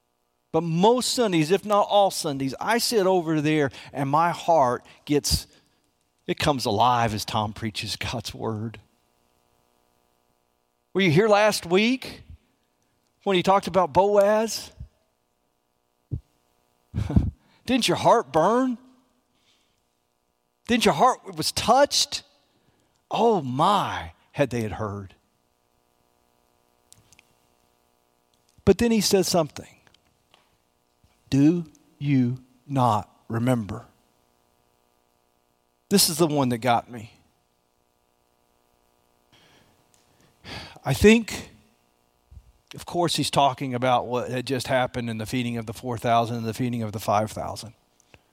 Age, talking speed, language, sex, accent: 50-69, 110 wpm, English, male, American